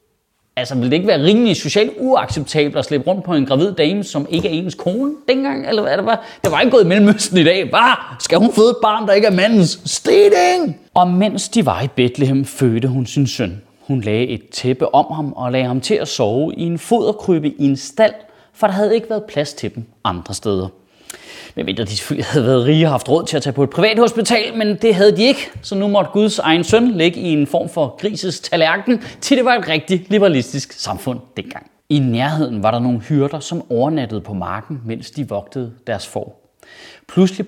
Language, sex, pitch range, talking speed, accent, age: Danish, male, 125-195 Hz, 220 wpm, native, 30-49